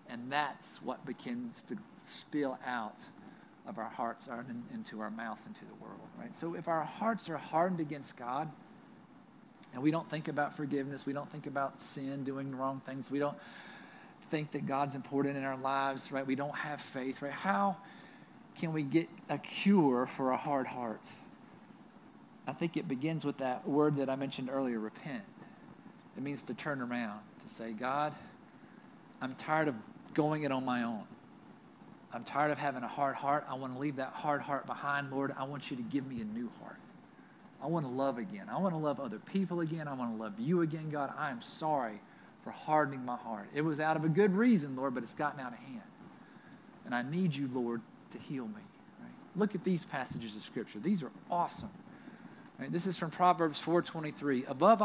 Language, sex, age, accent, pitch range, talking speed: English, male, 50-69, American, 135-200 Hz, 200 wpm